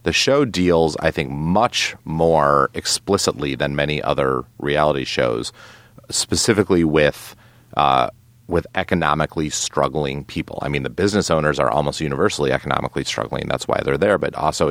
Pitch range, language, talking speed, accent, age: 75-95 Hz, English, 145 wpm, American, 30-49